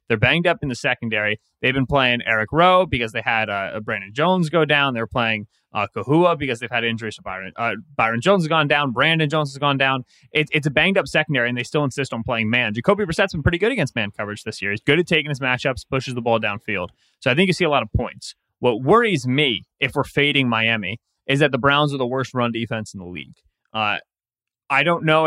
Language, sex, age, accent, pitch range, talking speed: English, male, 20-39, American, 115-155 Hz, 250 wpm